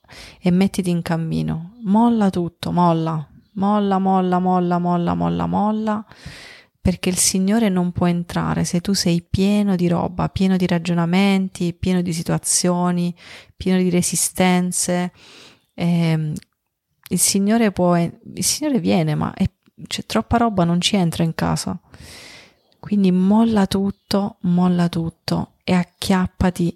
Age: 30-49